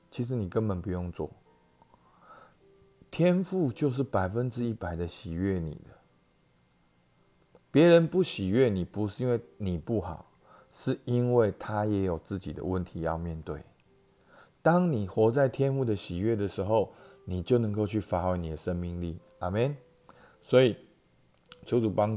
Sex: male